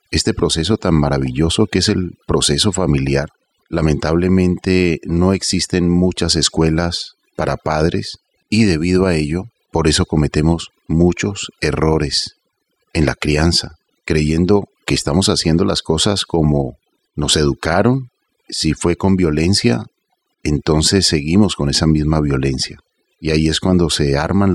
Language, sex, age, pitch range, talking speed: Spanish, male, 40-59, 75-95 Hz, 130 wpm